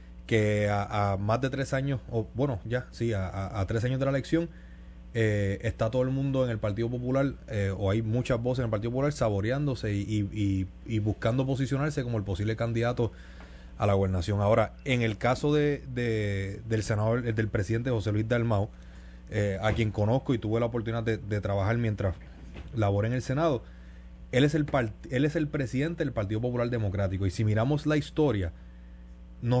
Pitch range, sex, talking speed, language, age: 105-140 Hz, male, 200 wpm, Spanish, 30-49